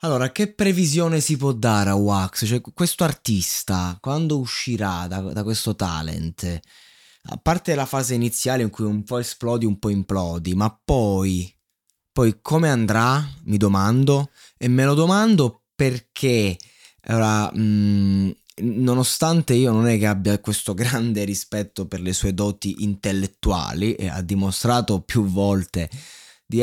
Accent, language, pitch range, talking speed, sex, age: native, Italian, 100-135 Hz, 145 wpm, male, 20-39